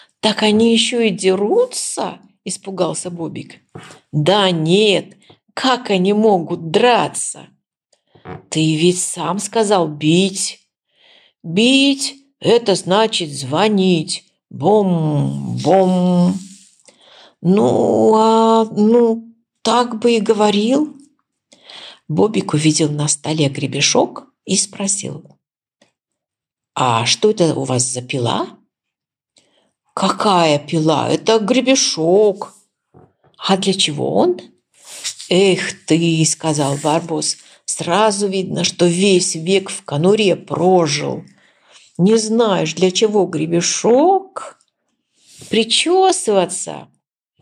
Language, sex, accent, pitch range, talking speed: Ukrainian, female, native, 160-220 Hz, 85 wpm